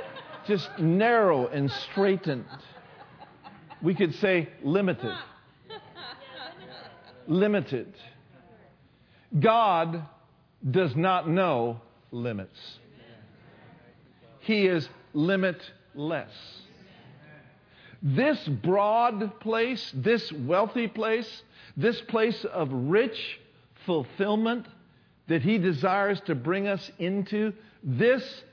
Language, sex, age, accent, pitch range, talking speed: English, male, 50-69, American, 140-220 Hz, 75 wpm